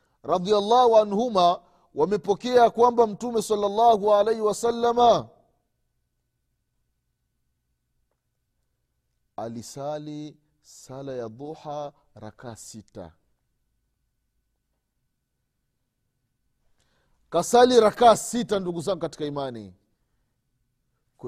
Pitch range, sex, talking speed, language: 125-185 Hz, male, 60 wpm, Swahili